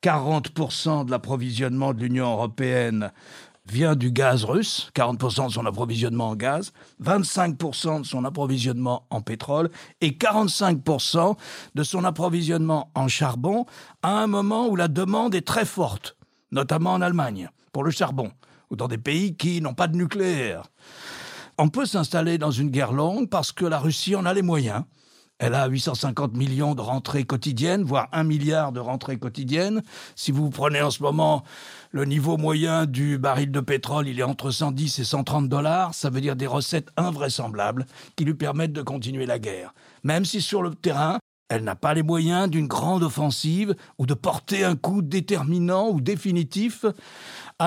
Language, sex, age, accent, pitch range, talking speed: French, male, 50-69, French, 135-175 Hz, 170 wpm